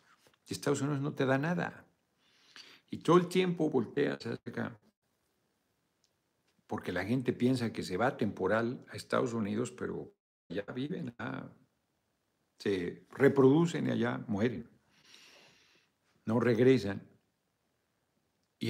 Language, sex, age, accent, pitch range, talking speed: Spanish, male, 60-79, Mexican, 95-135 Hz, 115 wpm